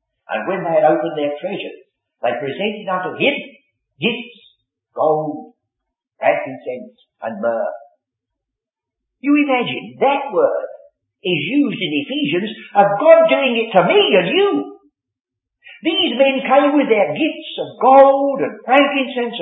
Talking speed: 130 wpm